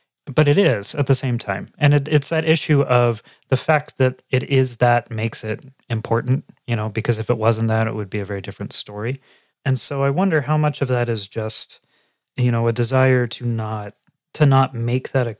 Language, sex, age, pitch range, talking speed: English, male, 30-49, 120-145 Hz, 220 wpm